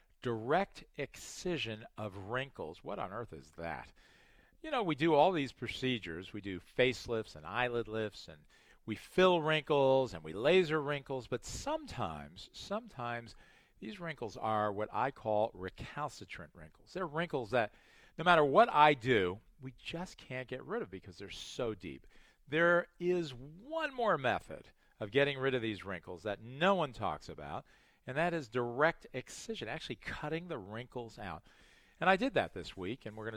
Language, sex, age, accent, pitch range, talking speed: English, male, 50-69, American, 100-140 Hz, 170 wpm